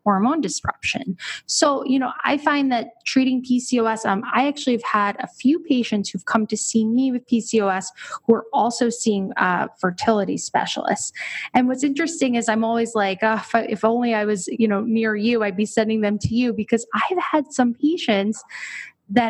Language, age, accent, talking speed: English, 20-39, American, 195 wpm